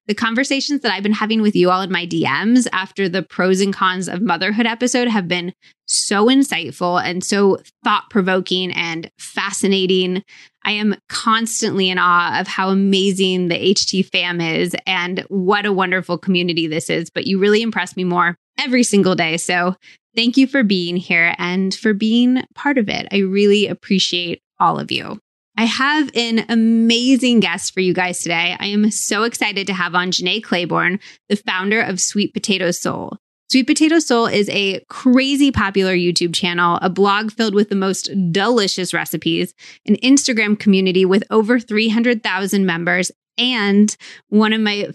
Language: English